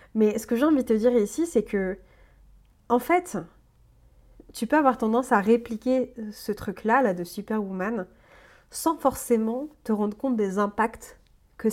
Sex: female